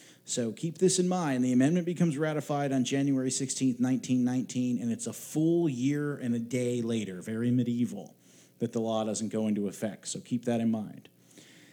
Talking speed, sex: 185 wpm, male